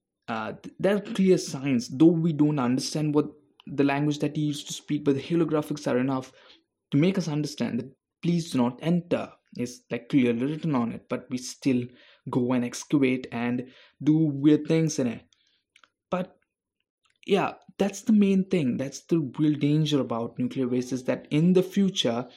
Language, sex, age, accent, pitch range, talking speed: English, male, 20-39, Indian, 125-165 Hz, 180 wpm